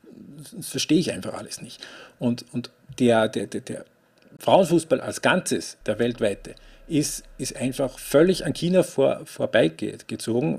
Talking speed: 135 wpm